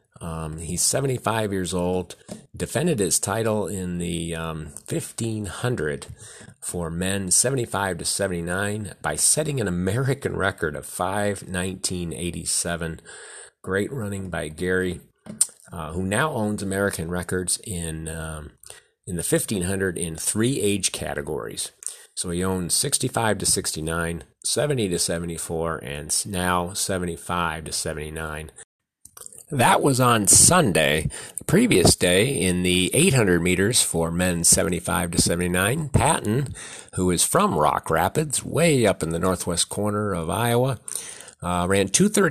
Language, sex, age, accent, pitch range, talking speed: English, male, 40-59, American, 85-105 Hz, 125 wpm